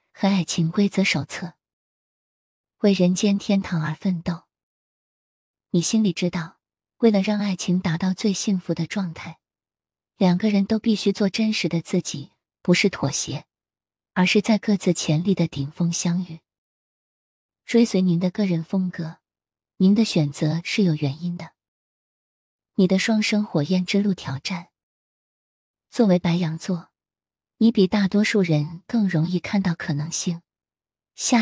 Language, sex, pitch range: Chinese, female, 160-200 Hz